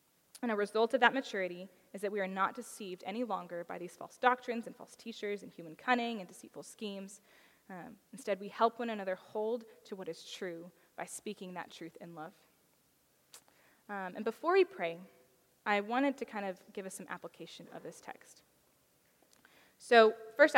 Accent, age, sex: American, 10-29, female